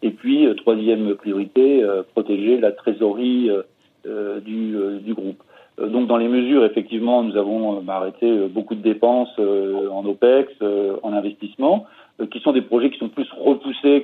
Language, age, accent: French, 40-59, French